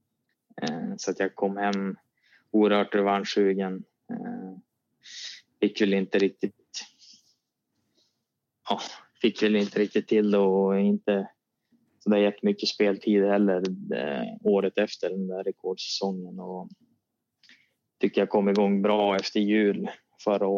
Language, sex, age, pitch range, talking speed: Swedish, male, 20-39, 95-105 Hz, 115 wpm